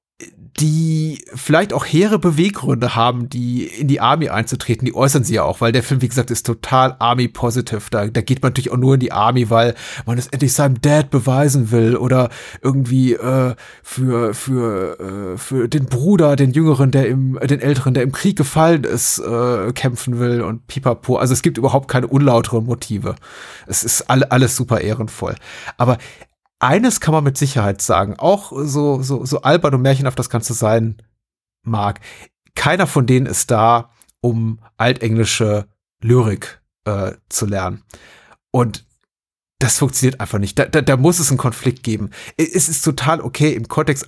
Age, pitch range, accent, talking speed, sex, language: 30-49, 115-140 Hz, German, 175 wpm, male, German